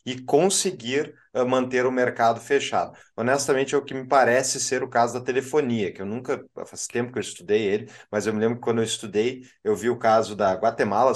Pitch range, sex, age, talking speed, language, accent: 110-135 Hz, male, 20-39, 215 wpm, Portuguese, Brazilian